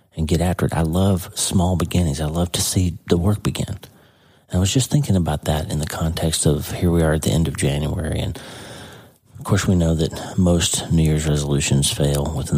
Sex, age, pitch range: male, 40-59, 75-100 Hz